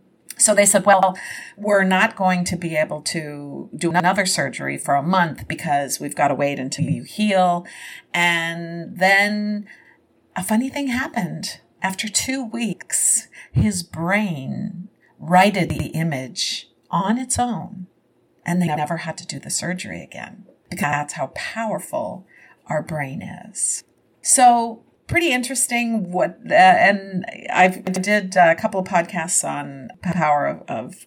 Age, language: 50-69, English